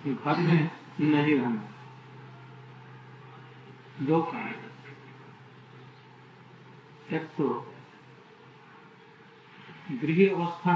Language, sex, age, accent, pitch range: Hindi, male, 60-79, native, 150-180 Hz